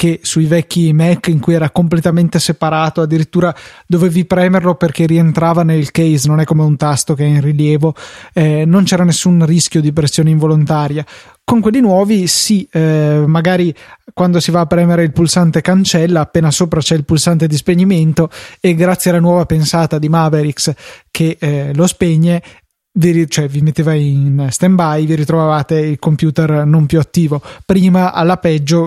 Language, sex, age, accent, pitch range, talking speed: Italian, male, 20-39, native, 155-170 Hz, 170 wpm